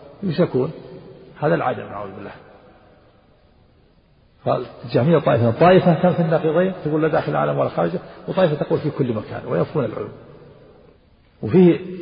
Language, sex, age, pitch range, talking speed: Arabic, male, 50-69, 125-175 Hz, 125 wpm